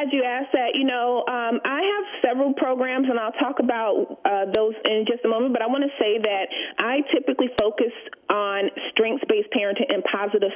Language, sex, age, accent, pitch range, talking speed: English, female, 30-49, American, 200-280 Hz, 195 wpm